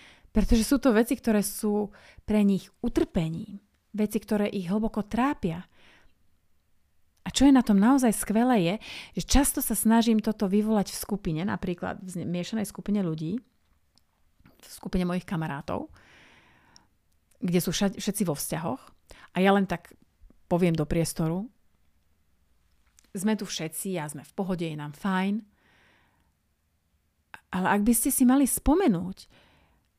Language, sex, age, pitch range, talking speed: Slovak, female, 30-49, 165-215 Hz, 140 wpm